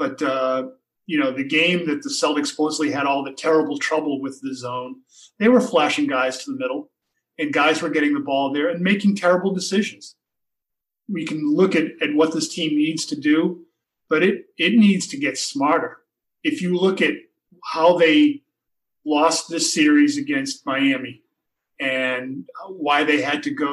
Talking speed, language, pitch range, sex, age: 180 wpm, English, 145-215 Hz, male, 40-59